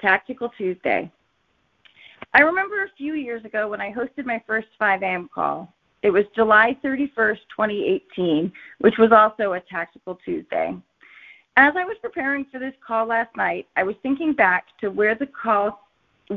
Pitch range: 195-260 Hz